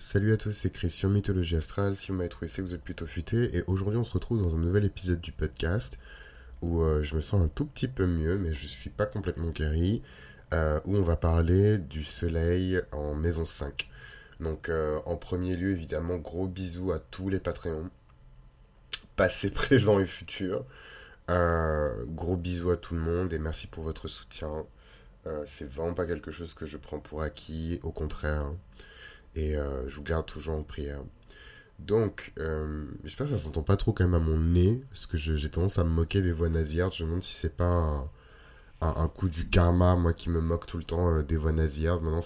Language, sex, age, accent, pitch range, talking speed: French, male, 20-39, French, 80-95 Hz, 215 wpm